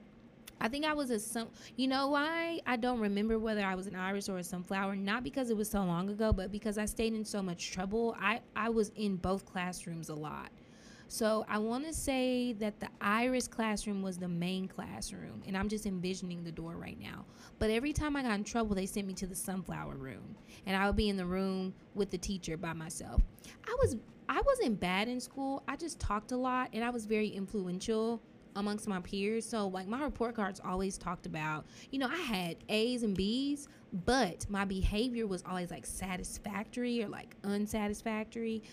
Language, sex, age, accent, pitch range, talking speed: English, female, 20-39, American, 190-245 Hz, 210 wpm